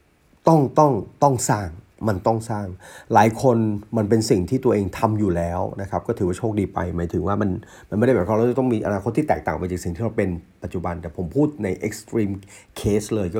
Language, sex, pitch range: Thai, male, 90-115 Hz